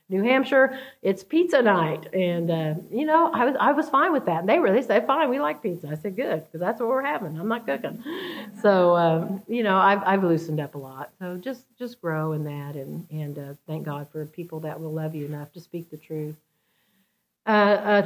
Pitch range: 160-205 Hz